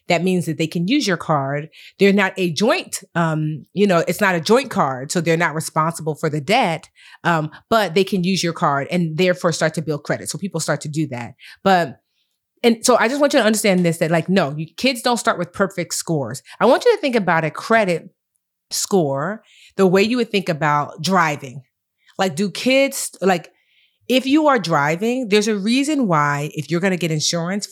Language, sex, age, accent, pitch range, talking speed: English, female, 30-49, American, 160-215 Hz, 215 wpm